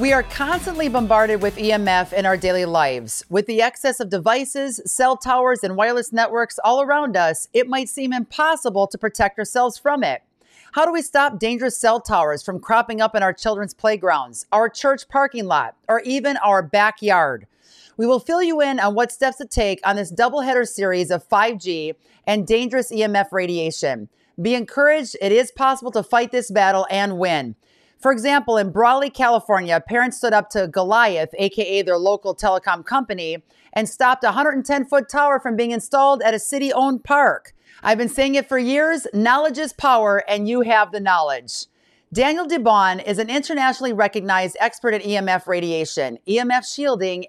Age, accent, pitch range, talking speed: 40-59, American, 200-265 Hz, 175 wpm